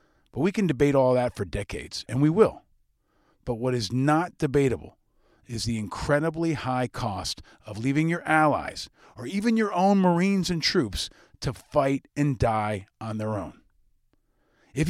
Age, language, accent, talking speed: 40-59, English, American, 160 wpm